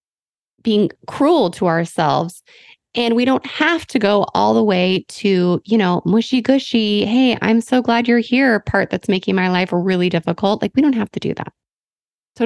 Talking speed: 185 wpm